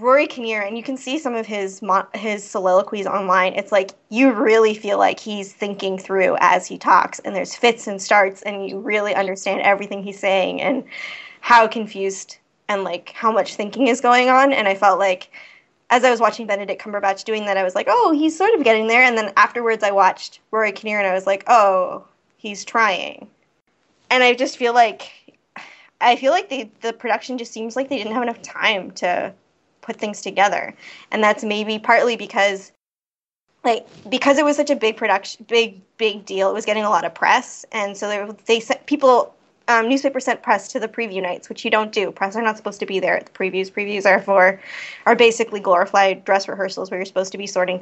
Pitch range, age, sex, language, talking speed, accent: 195-230 Hz, 20-39, female, English, 215 wpm, American